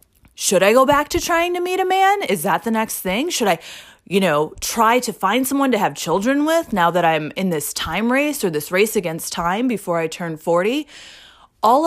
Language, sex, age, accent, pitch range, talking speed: English, female, 20-39, American, 170-215 Hz, 225 wpm